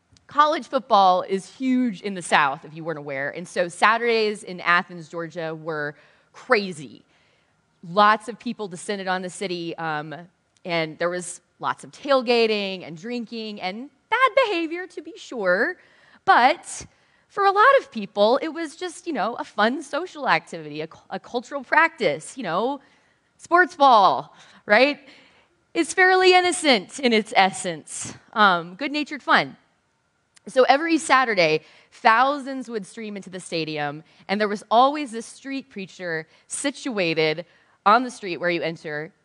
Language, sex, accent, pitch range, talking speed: English, female, American, 180-275 Hz, 150 wpm